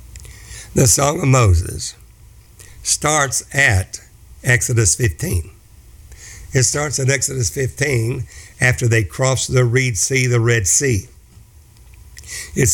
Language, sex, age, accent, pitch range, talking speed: English, male, 60-79, American, 100-125 Hz, 110 wpm